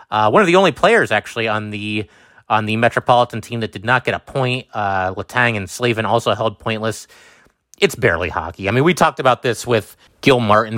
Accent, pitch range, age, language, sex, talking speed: American, 105-125 Hz, 30-49, English, male, 210 wpm